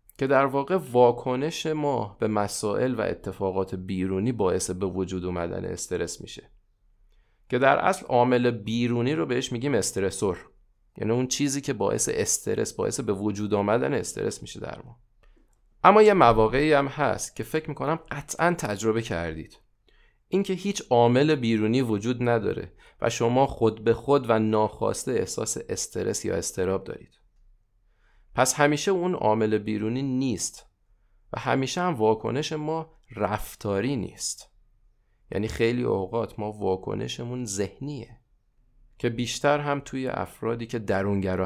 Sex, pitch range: male, 105-135 Hz